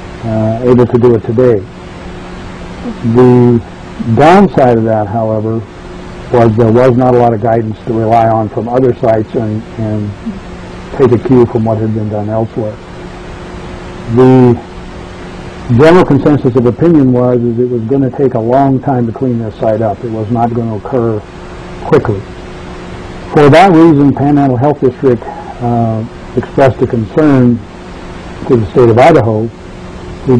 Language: English